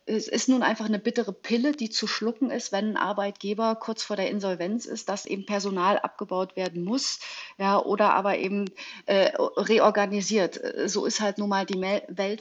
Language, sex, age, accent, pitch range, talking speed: German, female, 40-59, German, 195-235 Hz, 185 wpm